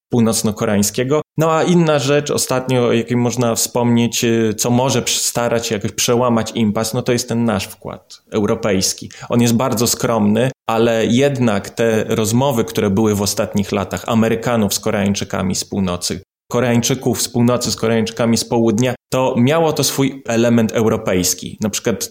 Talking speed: 155 wpm